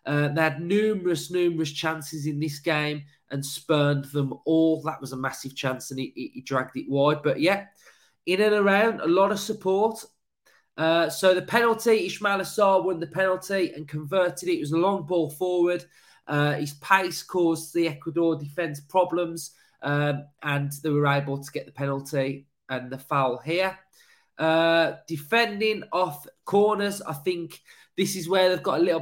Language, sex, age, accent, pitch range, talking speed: English, male, 20-39, British, 145-185 Hz, 175 wpm